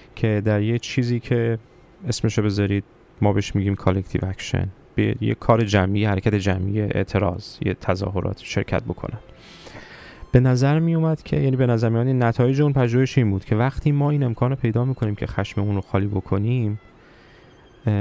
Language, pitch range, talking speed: Persian, 105-130 Hz, 155 wpm